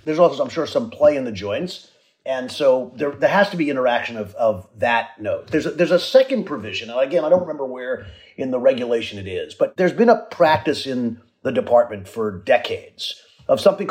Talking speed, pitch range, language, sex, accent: 215 wpm, 120-195 Hz, English, male, American